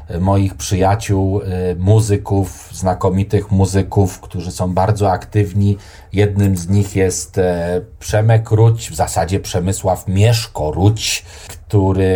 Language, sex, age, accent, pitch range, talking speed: Polish, male, 30-49, native, 95-115 Hz, 105 wpm